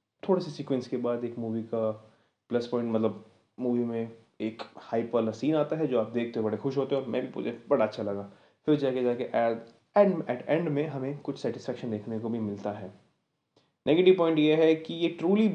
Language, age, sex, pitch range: Hindi, 20-39, male, 115-145 Hz